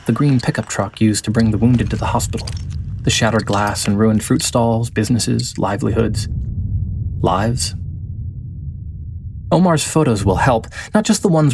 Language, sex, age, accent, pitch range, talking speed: English, male, 30-49, American, 105-125 Hz, 155 wpm